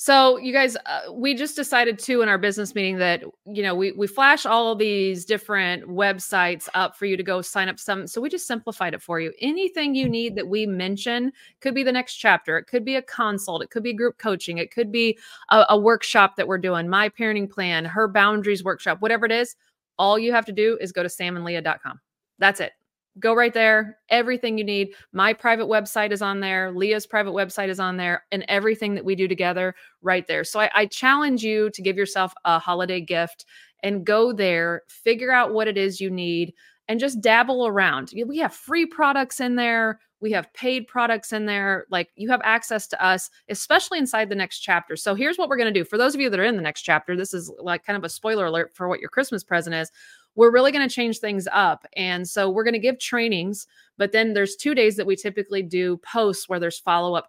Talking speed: 230 wpm